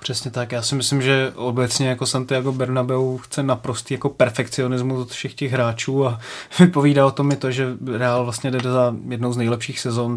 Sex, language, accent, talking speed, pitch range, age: male, Czech, native, 195 wpm, 125-140 Hz, 20-39